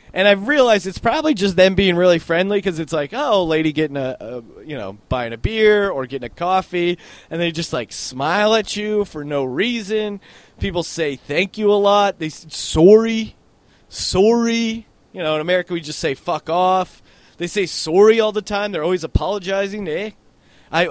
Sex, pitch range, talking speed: male, 145-200 Hz, 190 wpm